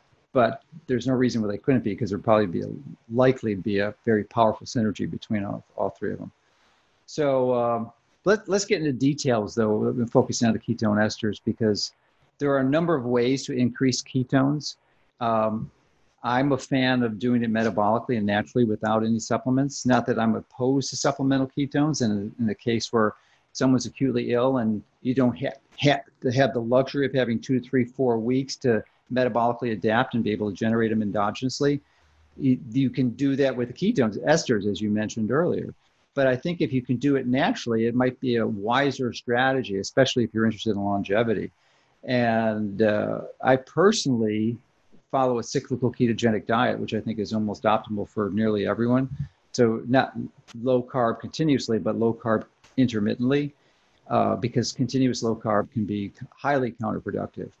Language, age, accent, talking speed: English, 50-69, American, 180 wpm